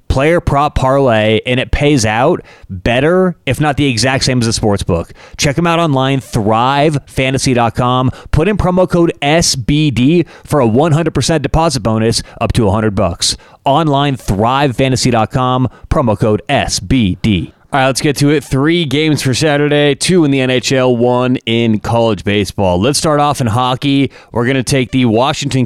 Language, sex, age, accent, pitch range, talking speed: English, male, 30-49, American, 110-140 Hz, 170 wpm